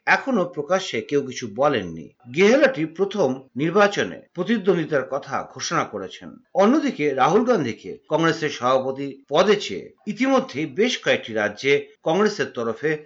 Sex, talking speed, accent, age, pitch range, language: male, 70 wpm, native, 50-69, 140-205 Hz, Bengali